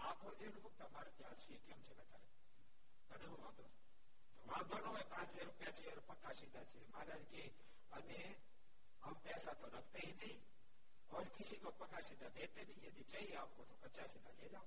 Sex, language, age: male, Gujarati, 60-79